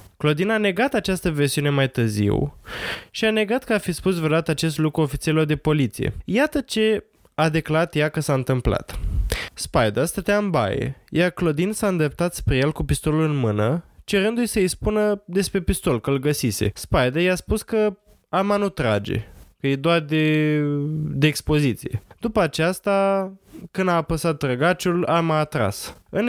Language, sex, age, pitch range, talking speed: Romanian, male, 20-39, 135-175 Hz, 165 wpm